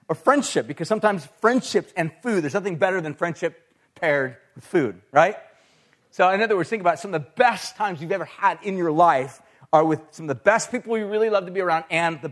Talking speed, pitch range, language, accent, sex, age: 235 wpm, 140-205 Hz, English, American, male, 30-49